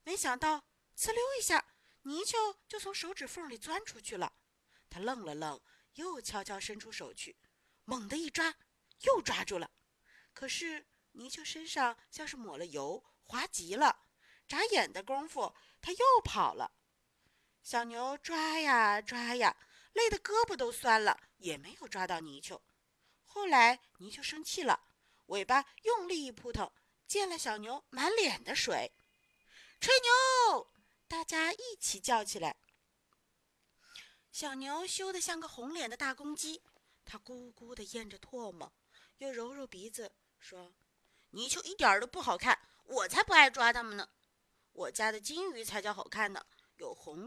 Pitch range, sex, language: 230-370 Hz, female, Chinese